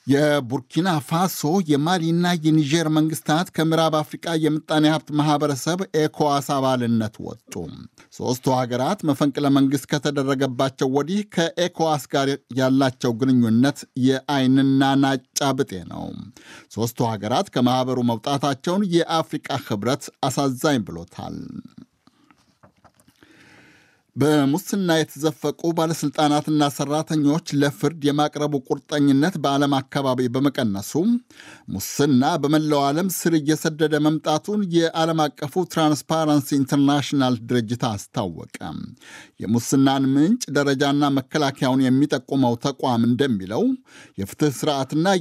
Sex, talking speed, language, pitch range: male, 85 wpm, Amharic, 135-160 Hz